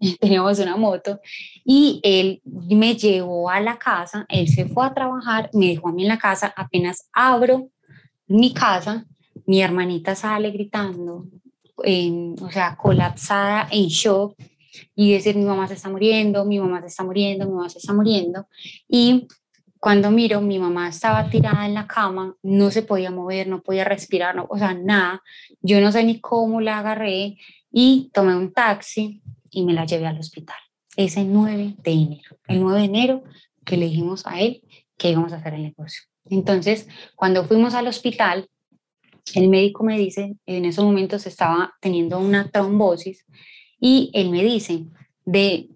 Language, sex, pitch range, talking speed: Spanish, female, 175-215 Hz, 170 wpm